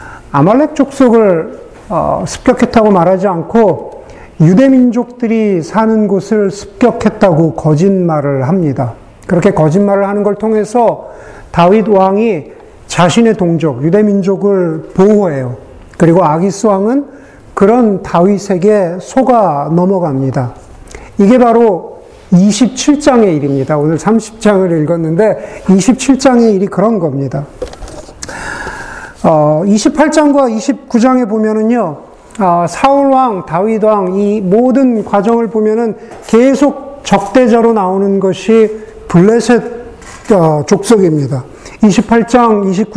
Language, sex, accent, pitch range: Korean, male, native, 180-235 Hz